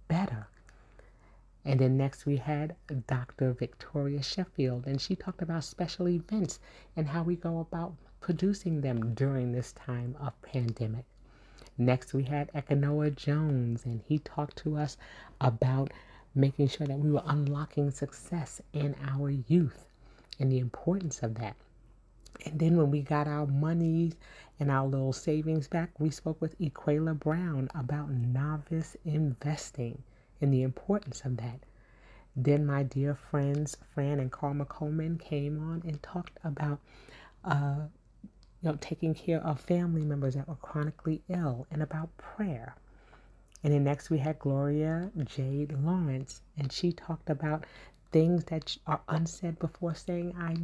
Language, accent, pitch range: English, American, 130-160 Hz